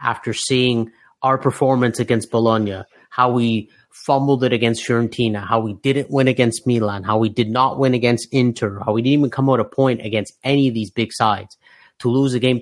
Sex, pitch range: male, 115-135 Hz